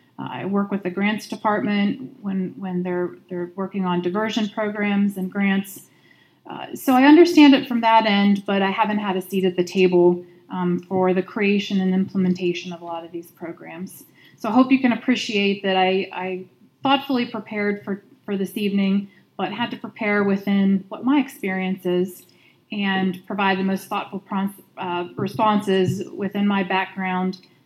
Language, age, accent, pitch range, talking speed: English, 30-49, American, 185-215 Hz, 175 wpm